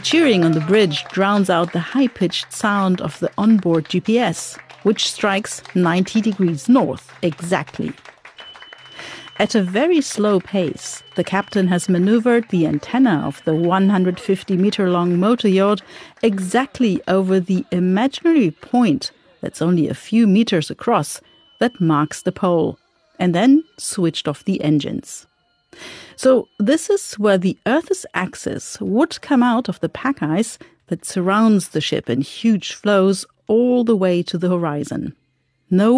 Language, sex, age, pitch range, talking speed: English, female, 50-69, 175-240 Hz, 140 wpm